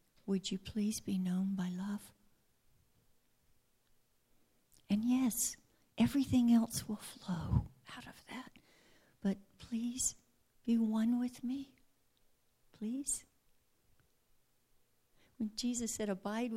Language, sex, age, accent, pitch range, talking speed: English, female, 60-79, American, 205-270 Hz, 100 wpm